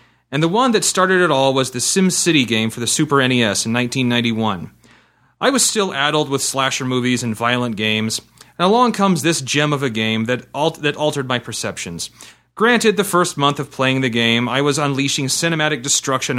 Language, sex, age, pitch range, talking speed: English, male, 30-49, 120-175 Hz, 195 wpm